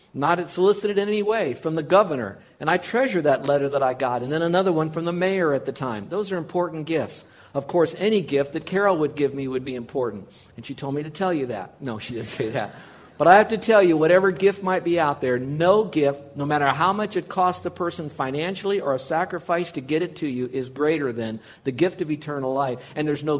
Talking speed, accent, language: 250 wpm, American, English